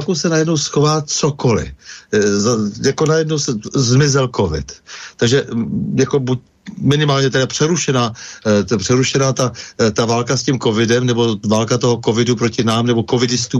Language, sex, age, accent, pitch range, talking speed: Czech, male, 60-79, native, 115-145 Hz, 140 wpm